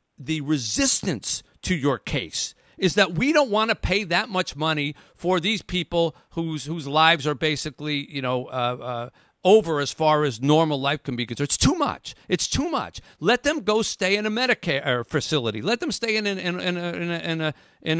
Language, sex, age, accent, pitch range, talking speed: English, male, 50-69, American, 145-200 Hz, 220 wpm